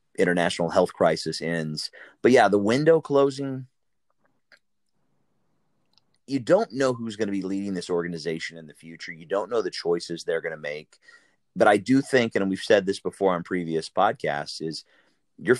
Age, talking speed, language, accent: 30-49, 175 wpm, English, American